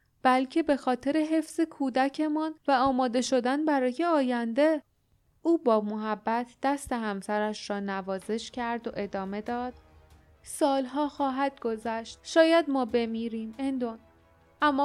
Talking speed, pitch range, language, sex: 115 wpm, 220-280 Hz, Persian, female